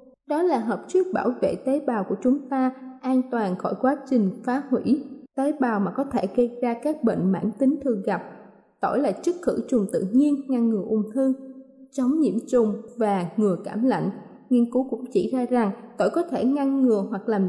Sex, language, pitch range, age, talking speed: female, Vietnamese, 225-275 Hz, 20-39, 215 wpm